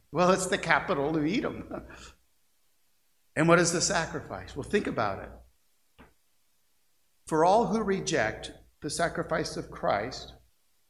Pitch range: 105-155 Hz